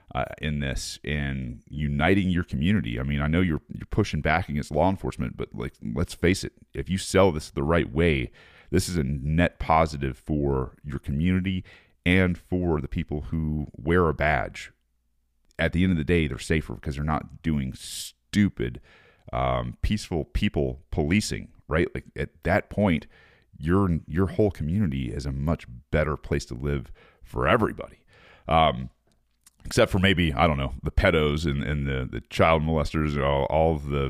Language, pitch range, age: English, 70-90 Hz, 40-59